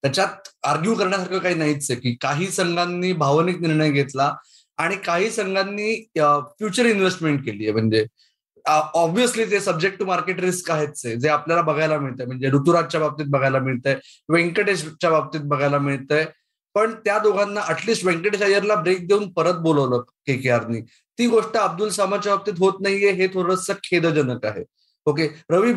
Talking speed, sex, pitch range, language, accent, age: 145 wpm, male, 155-210 Hz, Marathi, native, 20-39